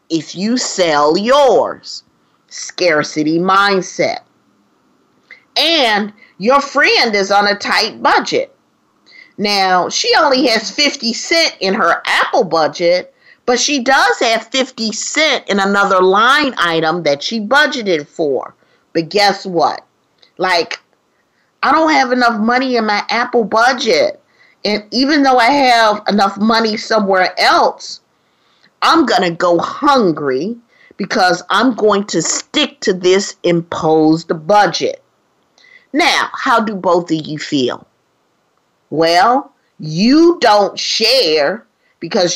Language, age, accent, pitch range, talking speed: English, 40-59, American, 180-250 Hz, 120 wpm